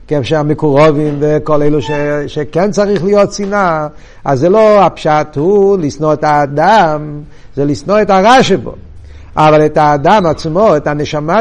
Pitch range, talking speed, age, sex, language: 160-220 Hz, 145 wpm, 50-69, male, Hebrew